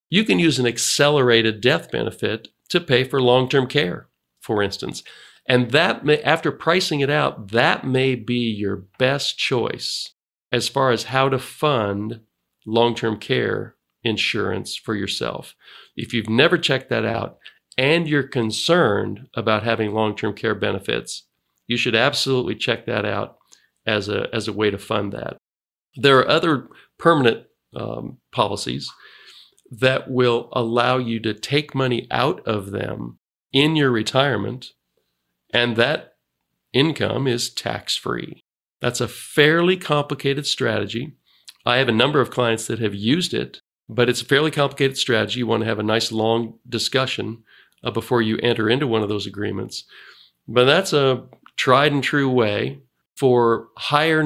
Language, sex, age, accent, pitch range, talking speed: English, male, 50-69, American, 110-135 Hz, 155 wpm